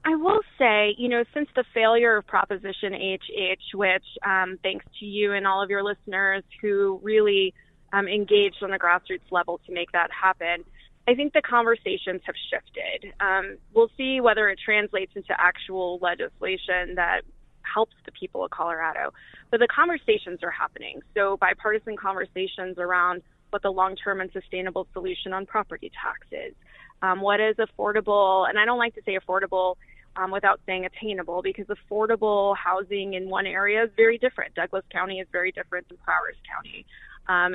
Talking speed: 170 wpm